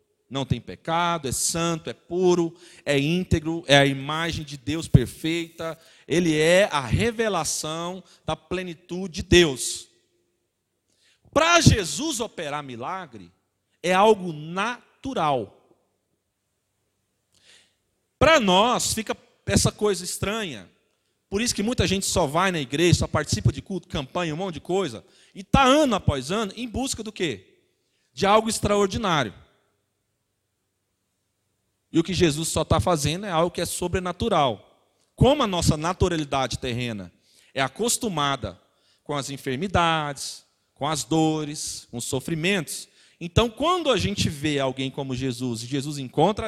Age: 40-59